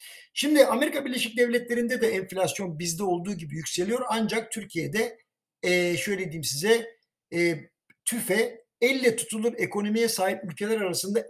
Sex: male